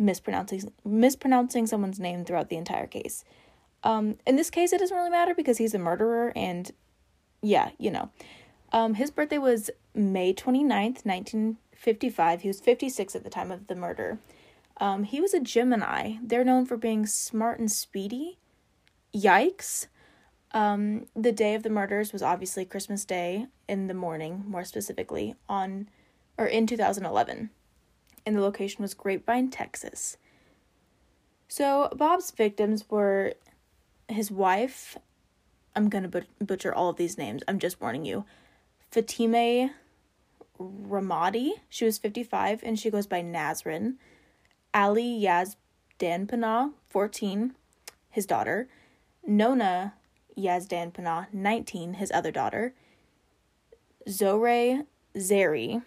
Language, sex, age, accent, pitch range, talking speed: English, female, 10-29, American, 195-240 Hz, 130 wpm